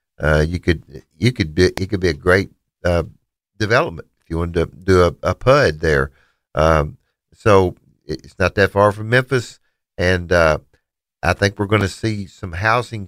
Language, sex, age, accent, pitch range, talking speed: English, male, 50-69, American, 90-115 Hz, 185 wpm